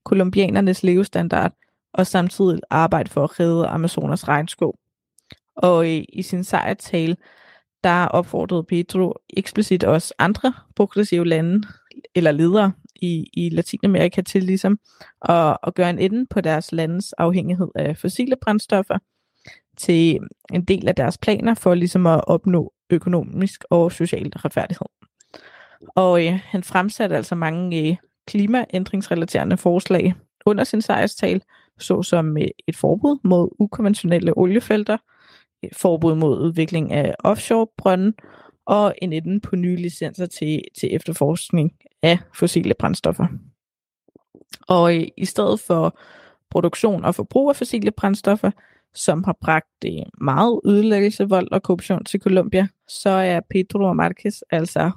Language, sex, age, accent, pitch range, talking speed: Danish, female, 20-39, native, 170-200 Hz, 125 wpm